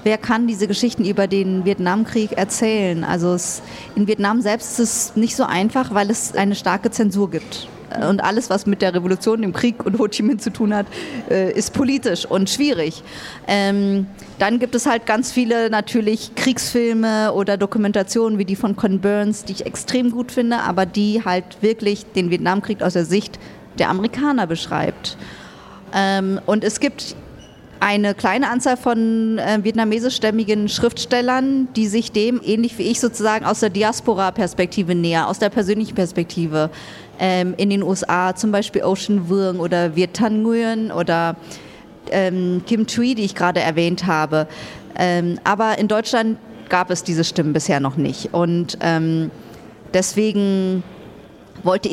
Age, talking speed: 30-49, 155 wpm